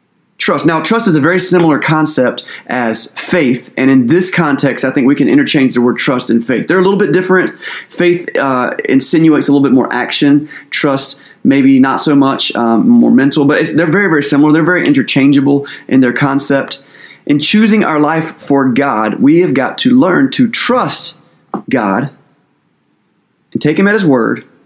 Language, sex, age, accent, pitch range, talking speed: English, male, 30-49, American, 130-180 Hz, 185 wpm